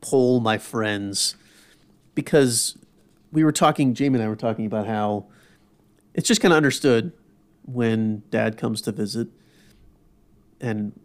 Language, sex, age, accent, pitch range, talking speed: English, male, 30-49, American, 110-150 Hz, 135 wpm